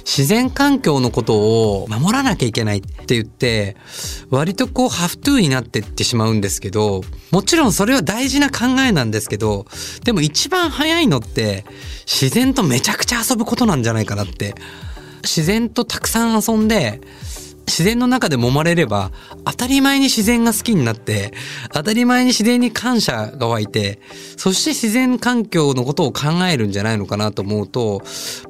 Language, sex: Japanese, male